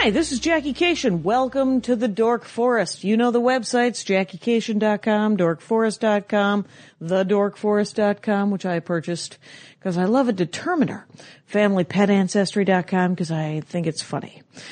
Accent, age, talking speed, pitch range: American, 40-59, 125 wpm, 175-235 Hz